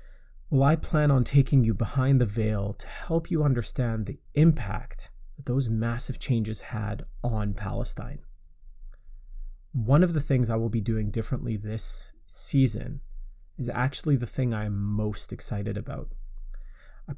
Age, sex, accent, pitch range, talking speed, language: 30-49, male, American, 105-135 Hz, 150 wpm, English